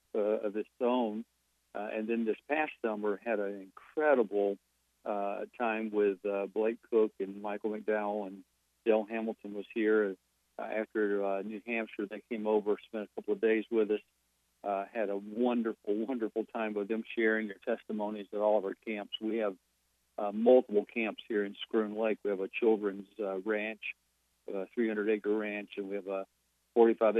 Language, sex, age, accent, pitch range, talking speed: English, male, 50-69, American, 100-110 Hz, 175 wpm